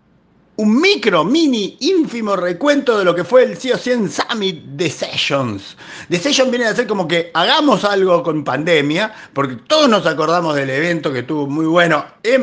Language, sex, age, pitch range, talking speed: Spanish, male, 50-69, 140-205 Hz, 180 wpm